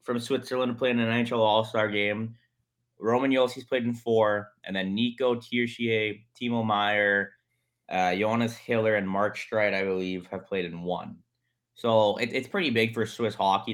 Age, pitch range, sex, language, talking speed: 20-39, 100-120 Hz, male, English, 170 wpm